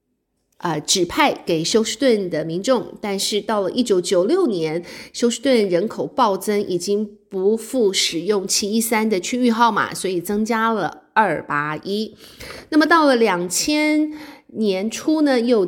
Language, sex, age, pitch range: Chinese, female, 30-49, 185-240 Hz